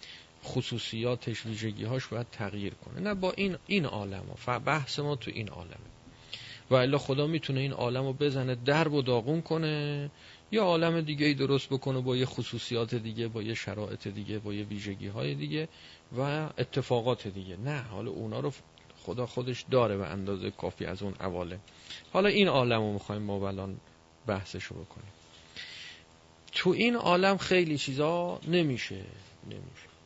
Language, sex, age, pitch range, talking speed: Persian, male, 40-59, 100-145 Hz, 160 wpm